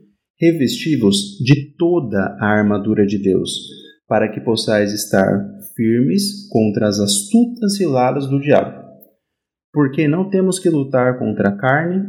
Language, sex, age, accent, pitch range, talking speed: Portuguese, male, 30-49, Brazilian, 105-155 Hz, 130 wpm